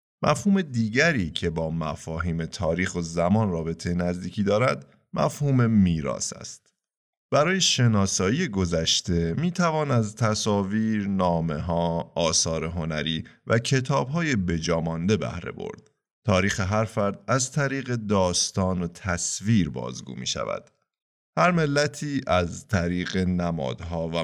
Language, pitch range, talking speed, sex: Persian, 85-120 Hz, 120 wpm, male